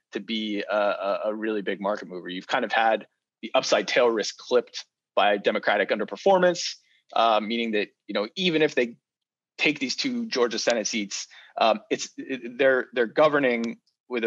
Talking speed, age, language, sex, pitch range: 175 wpm, 30-49, English, male, 100-135 Hz